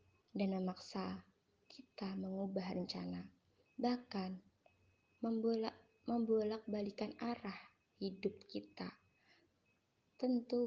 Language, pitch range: Indonesian, 185-225 Hz